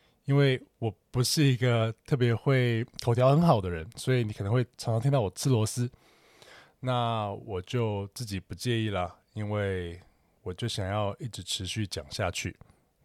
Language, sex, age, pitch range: Chinese, male, 20-39, 95-125 Hz